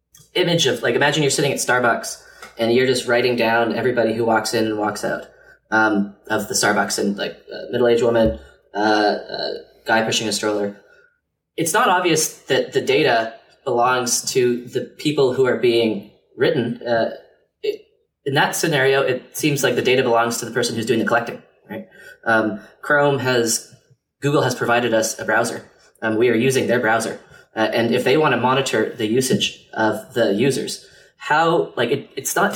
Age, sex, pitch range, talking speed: 20-39, male, 115-130 Hz, 185 wpm